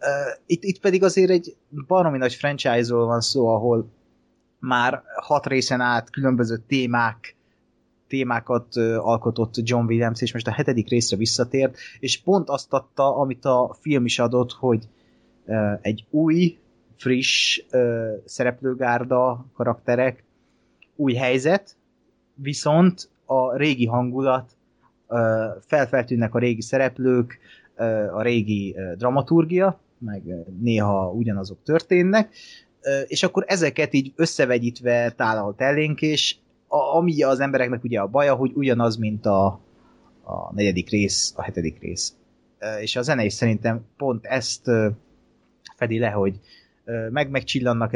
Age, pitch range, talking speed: 20-39, 115-140 Hz, 120 wpm